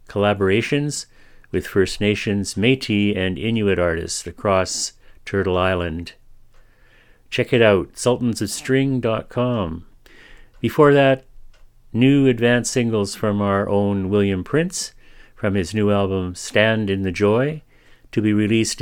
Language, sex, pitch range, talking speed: English, male, 100-125 Hz, 115 wpm